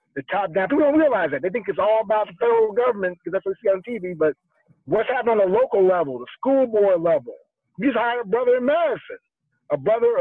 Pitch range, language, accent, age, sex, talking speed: 215-300 Hz, English, American, 50-69, male, 240 wpm